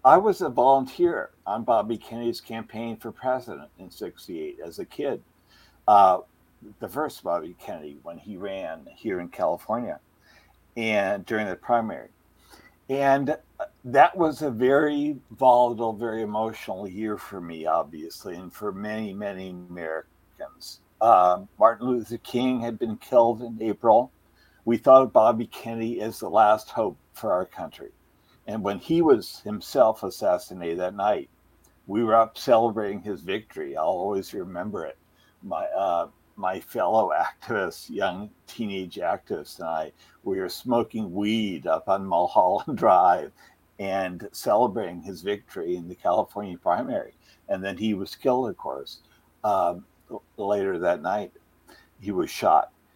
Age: 60-79